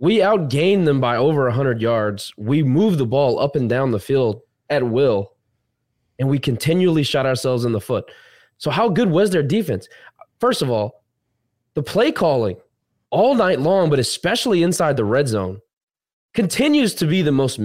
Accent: American